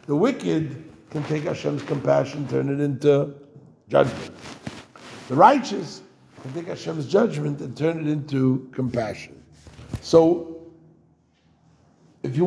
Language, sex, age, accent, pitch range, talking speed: English, male, 60-79, American, 145-190 Hz, 115 wpm